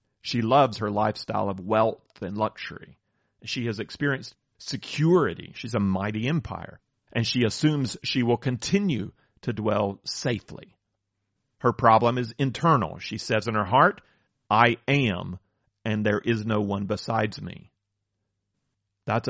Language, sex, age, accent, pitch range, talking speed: English, male, 40-59, American, 100-120 Hz, 135 wpm